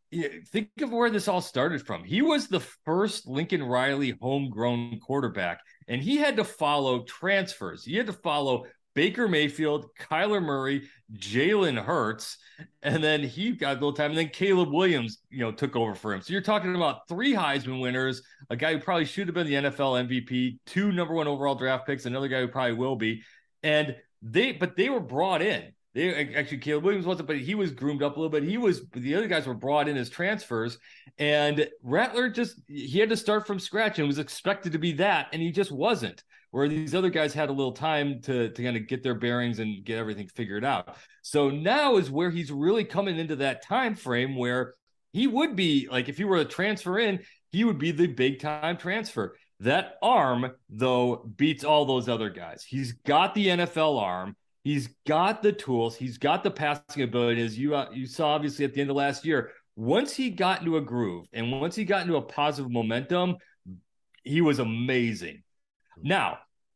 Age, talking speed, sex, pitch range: 40-59, 205 wpm, male, 130-180 Hz